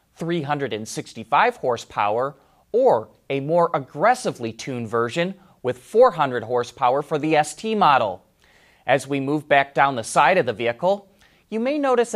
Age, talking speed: 30-49, 140 wpm